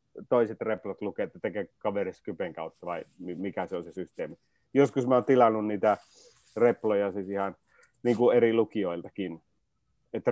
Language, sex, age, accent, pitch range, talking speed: Finnish, male, 30-49, native, 110-145 Hz, 150 wpm